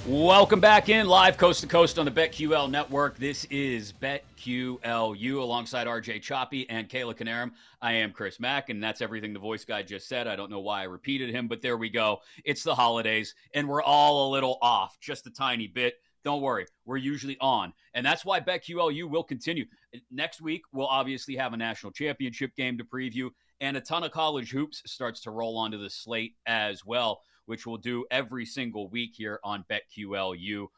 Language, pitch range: English, 110-140 Hz